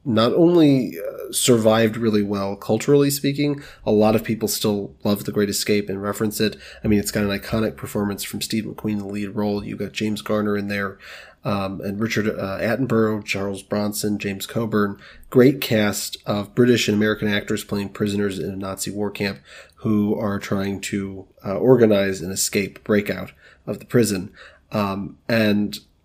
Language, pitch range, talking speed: English, 100-120 Hz, 175 wpm